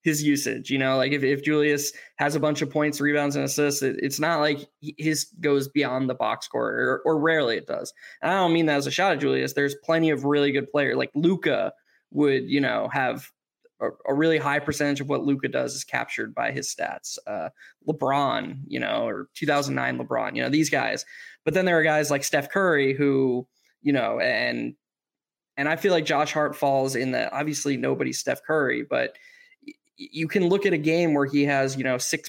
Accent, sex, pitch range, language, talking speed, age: American, male, 140-160 Hz, English, 215 wpm, 20-39